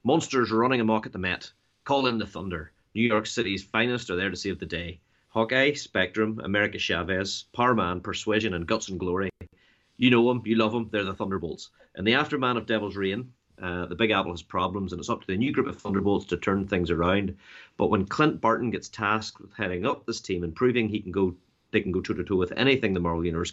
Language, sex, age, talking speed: English, male, 30-49, 225 wpm